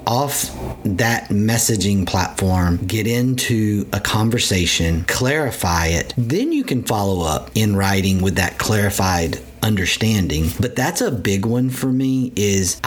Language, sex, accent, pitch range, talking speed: English, male, American, 95-120 Hz, 135 wpm